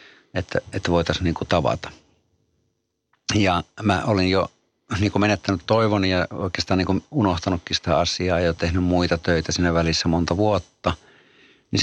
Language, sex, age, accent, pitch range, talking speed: Finnish, male, 60-79, native, 90-110 Hz, 150 wpm